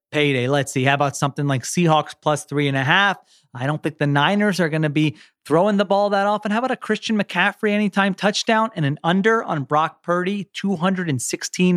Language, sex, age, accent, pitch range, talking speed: English, male, 30-49, American, 145-185 Hz, 210 wpm